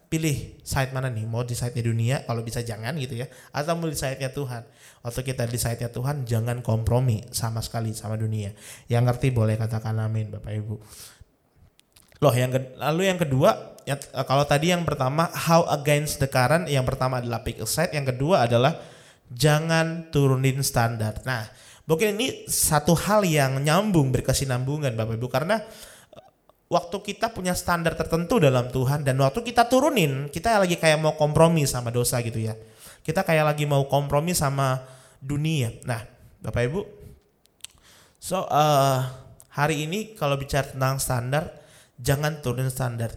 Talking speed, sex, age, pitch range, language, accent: 155 wpm, male, 20-39, 120-150 Hz, Indonesian, native